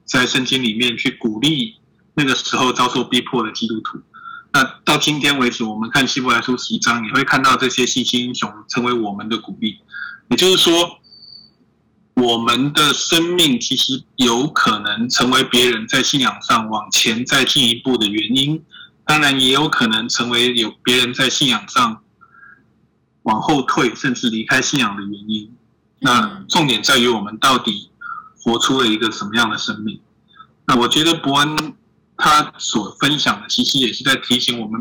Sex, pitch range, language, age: male, 115-145 Hz, Chinese, 20-39